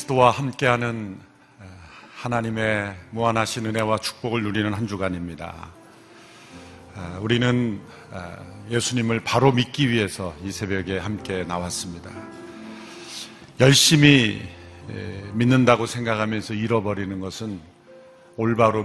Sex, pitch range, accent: male, 95-115 Hz, native